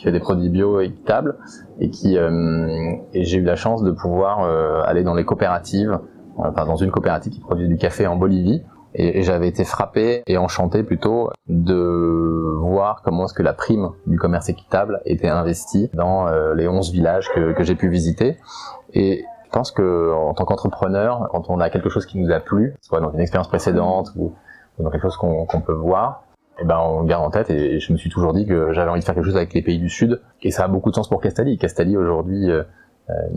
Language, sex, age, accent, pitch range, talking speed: French, male, 20-39, French, 85-95 Hz, 230 wpm